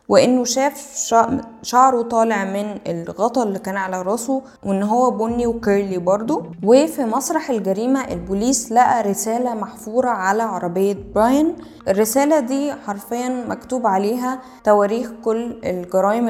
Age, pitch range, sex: 10-29, 195-250 Hz, female